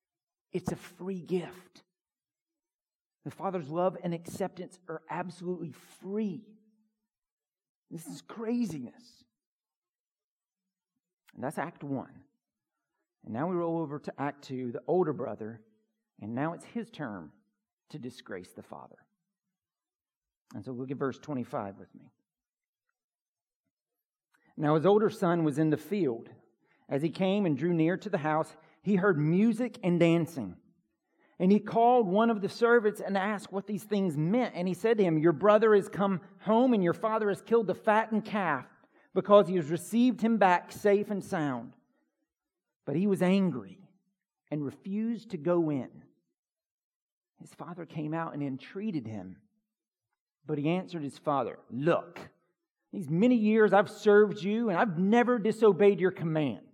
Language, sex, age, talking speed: English, male, 50-69, 150 wpm